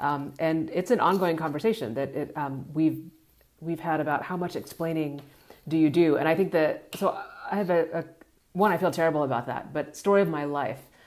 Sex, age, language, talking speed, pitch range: female, 30-49, English, 210 wpm, 150-185 Hz